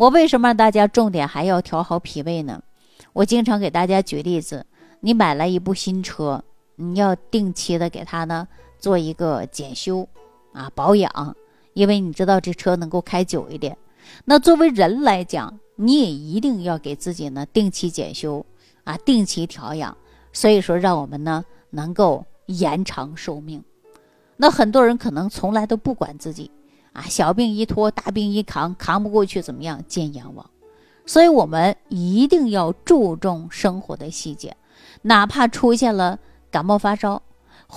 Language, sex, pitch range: Chinese, female, 165-220 Hz